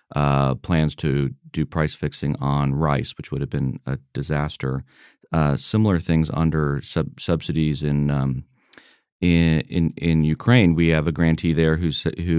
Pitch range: 75-85 Hz